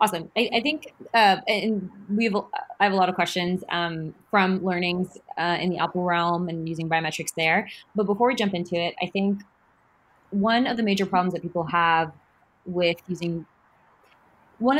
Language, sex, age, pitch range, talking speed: English, female, 20-39, 165-195 Hz, 175 wpm